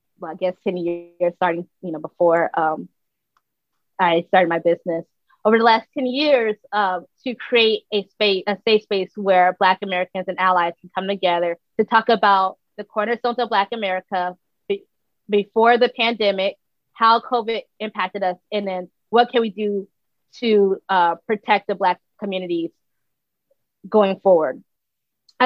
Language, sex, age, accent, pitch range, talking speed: English, female, 20-39, American, 185-225 Hz, 155 wpm